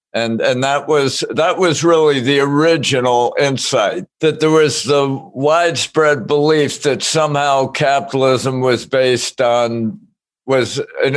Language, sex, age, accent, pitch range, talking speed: English, male, 60-79, American, 120-145 Hz, 130 wpm